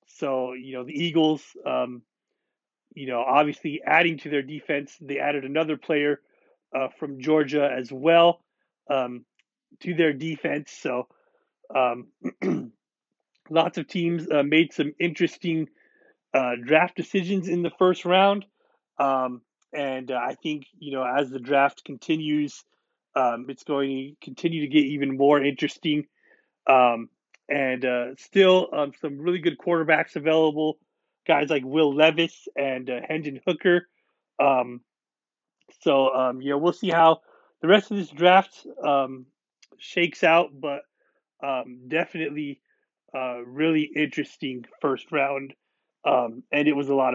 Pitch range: 135-170 Hz